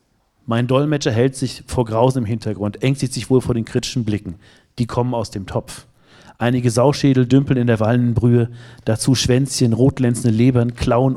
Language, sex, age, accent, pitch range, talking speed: German, male, 40-59, German, 110-130 Hz, 170 wpm